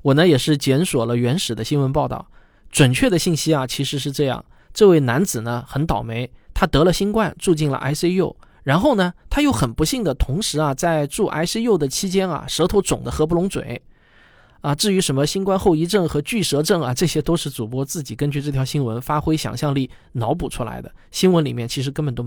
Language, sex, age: Chinese, male, 20-39